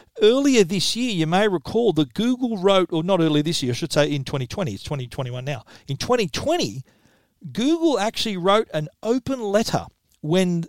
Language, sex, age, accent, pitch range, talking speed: English, male, 40-59, Australian, 150-190 Hz, 175 wpm